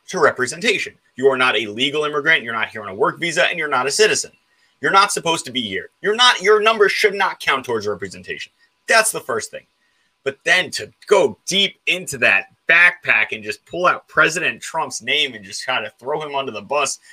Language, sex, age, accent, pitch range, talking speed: English, male, 30-49, American, 140-205 Hz, 220 wpm